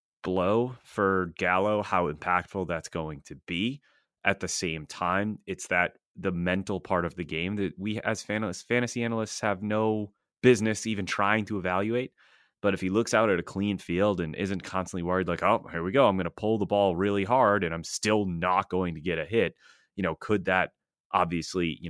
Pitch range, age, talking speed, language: 85-110 Hz, 30-49, 205 wpm, English